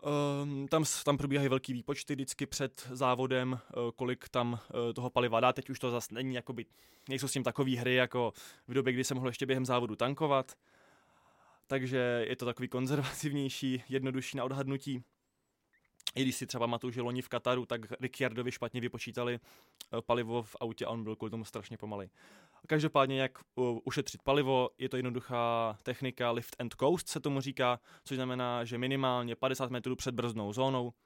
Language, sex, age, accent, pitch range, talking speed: Czech, male, 20-39, native, 120-135 Hz, 170 wpm